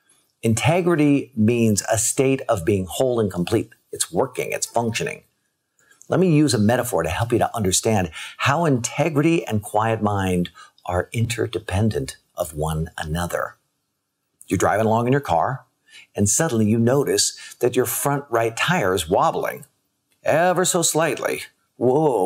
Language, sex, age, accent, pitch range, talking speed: English, male, 50-69, American, 100-140 Hz, 145 wpm